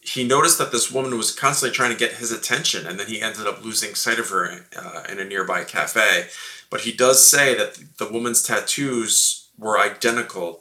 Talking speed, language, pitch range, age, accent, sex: 205 wpm, English, 110-135 Hz, 20-39, American, male